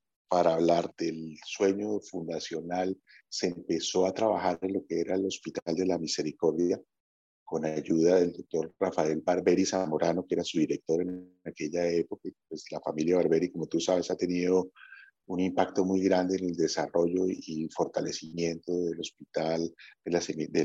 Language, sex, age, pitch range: Spanish, male, 40-59, 85-100 Hz